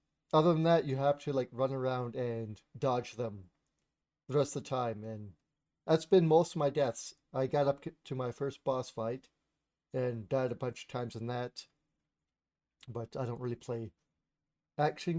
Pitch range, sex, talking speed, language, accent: 120-150 Hz, male, 180 wpm, English, American